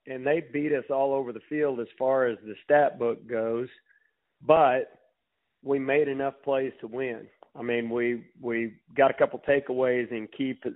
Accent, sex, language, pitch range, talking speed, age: American, male, English, 115-140 Hz, 180 wpm, 40-59